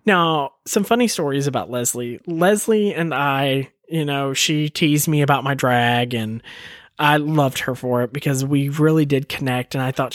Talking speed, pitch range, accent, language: 185 wpm, 140-190 Hz, American, English